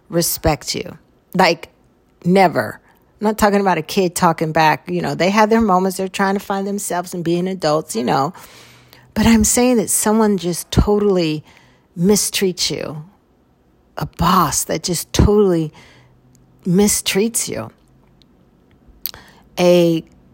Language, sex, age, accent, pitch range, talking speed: English, female, 50-69, American, 165-210 Hz, 135 wpm